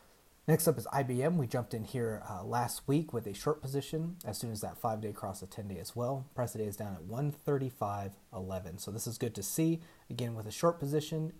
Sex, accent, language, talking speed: male, American, English, 230 wpm